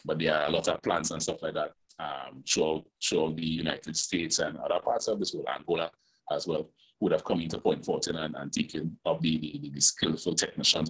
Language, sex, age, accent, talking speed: English, male, 30-49, Nigerian, 235 wpm